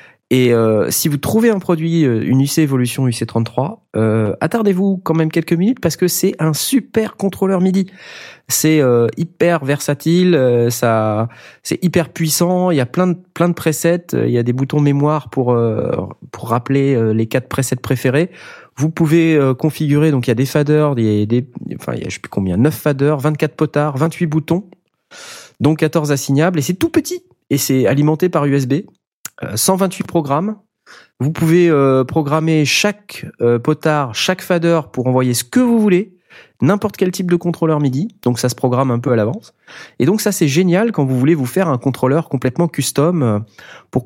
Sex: male